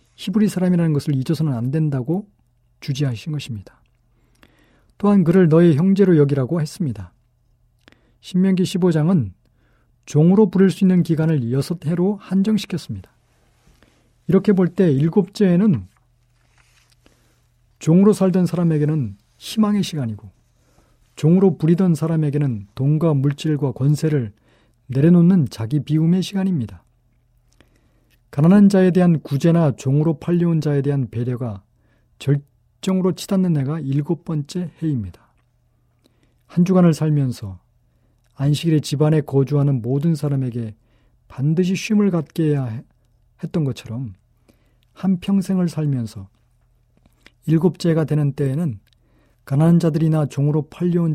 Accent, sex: native, male